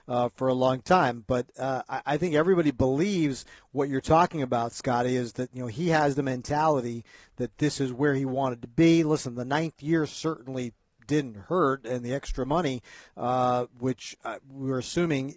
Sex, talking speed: male, 185 wpm